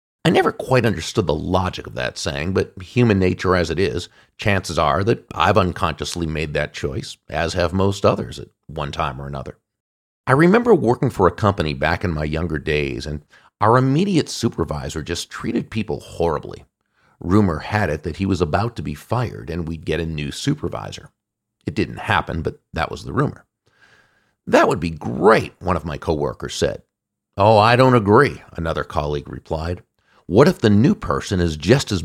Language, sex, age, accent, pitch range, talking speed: English, male, 50-69, American, 80-115 Hz, 185 wpm